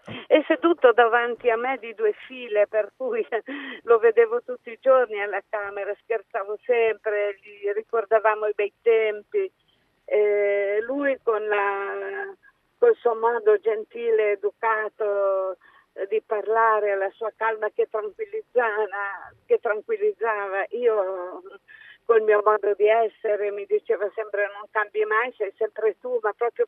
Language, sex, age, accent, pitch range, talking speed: Italian, female, 50-69, native, 210-295 Hz, 135 wpm